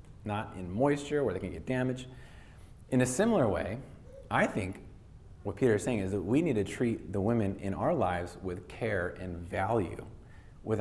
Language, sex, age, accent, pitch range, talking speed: English, male, 30-49, American, 100-160 Hz, 190 wpm